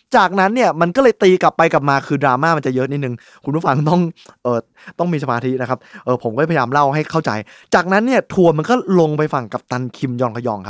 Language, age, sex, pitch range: Thai, 20-39, male, 125-175 Hz